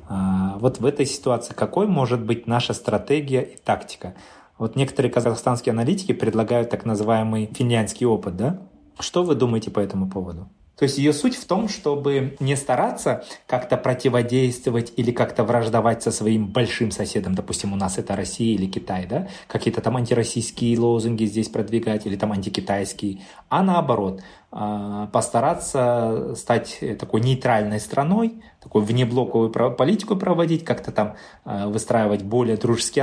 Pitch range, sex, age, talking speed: 105-135 Hz, male, 20-39, 145 wpm